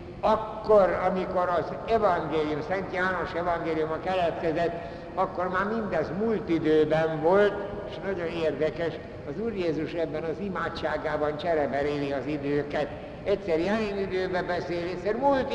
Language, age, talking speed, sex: Hungarian, 60-79, 125 wpm, male